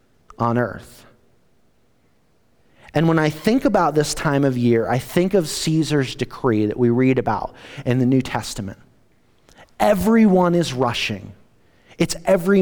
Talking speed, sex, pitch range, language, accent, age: 140 wpm, male, 115-150 Hz, English, American, 30-49